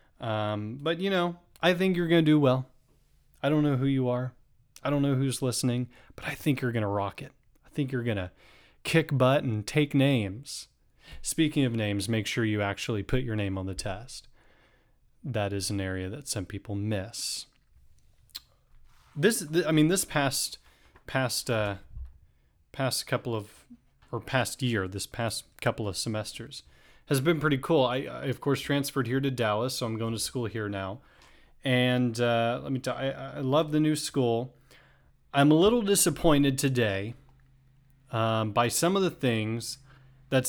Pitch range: 115-145 Hz